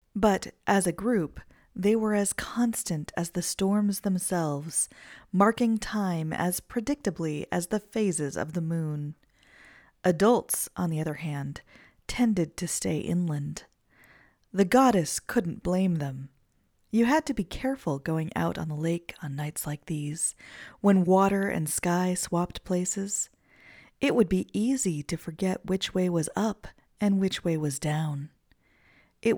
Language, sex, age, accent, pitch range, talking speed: English, female, 40-59, American, 160-210 Hz, 145 wpm